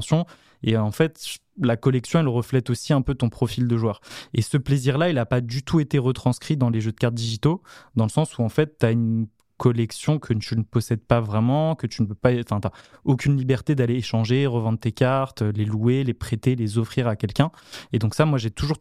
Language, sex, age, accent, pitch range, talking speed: French, male, 20-39, French, 115-135 Hz, 235 wpm